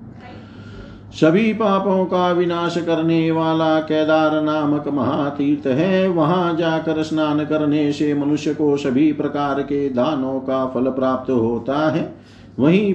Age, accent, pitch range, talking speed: 50-69, native, 135-165 Hz, 125 wpm